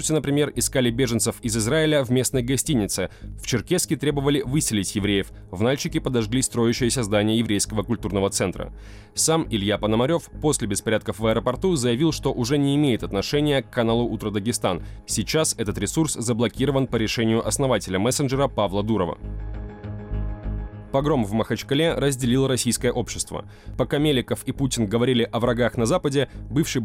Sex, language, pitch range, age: male, Russian, 105-140 Hz, 20-39